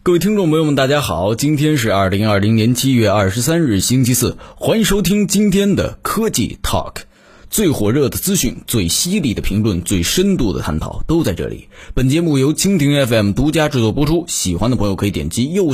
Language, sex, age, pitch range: Chinese, male, 20-39, 100-155 Hz